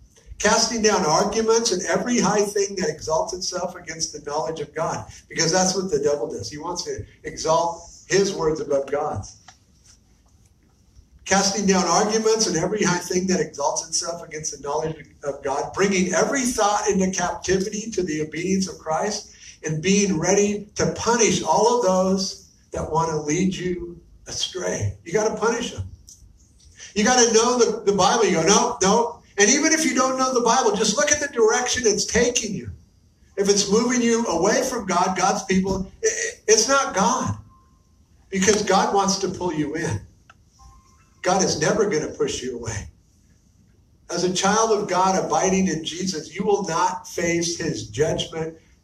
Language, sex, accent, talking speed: English, male, American, 175 wpm